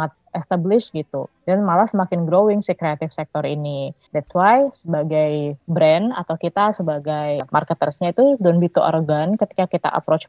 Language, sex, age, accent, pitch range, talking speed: English, female, 20-39, Indonesian, 160-200 Hz, 145 wpm